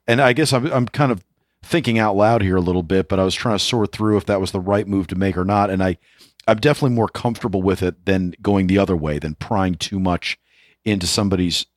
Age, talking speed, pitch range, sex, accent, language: 40-59, 255 wpm, 95-110 Hz, male, American, English